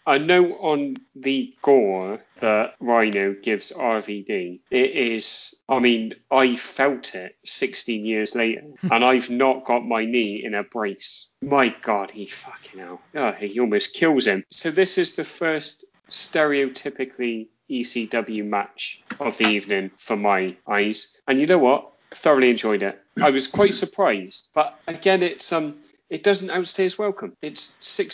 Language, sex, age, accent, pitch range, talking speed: English, male, 30-49, British, 110-165 Hz, 155 wpm